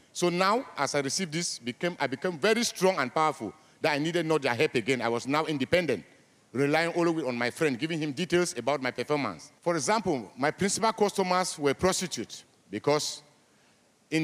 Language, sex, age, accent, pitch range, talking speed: English, male, 50-69, French, 135-175 Hz, 190 wpm